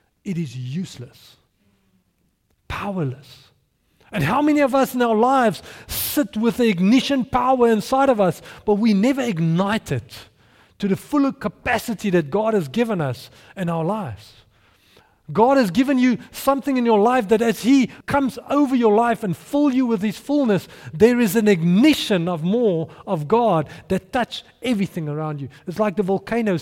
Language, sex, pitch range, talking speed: English, male, 155-235 Hz, 170 wpm